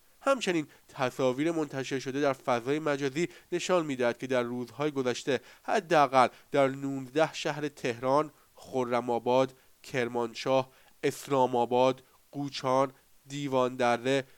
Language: Persian